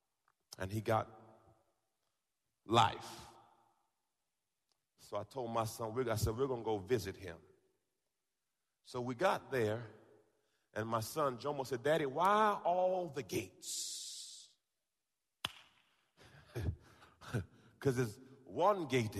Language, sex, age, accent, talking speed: English, male, 40-59, American, 110 wpm